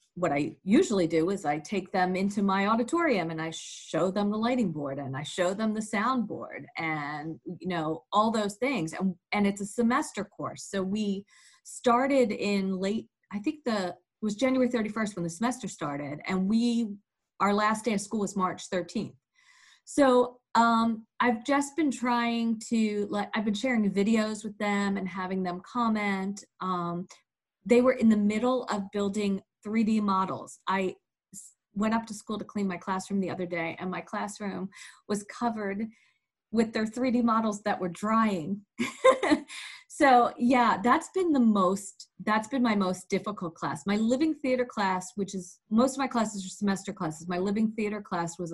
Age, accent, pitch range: 40-59, American, 185-230 Hz